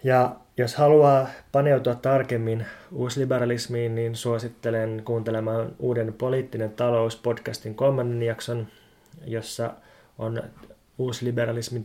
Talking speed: 85 wpm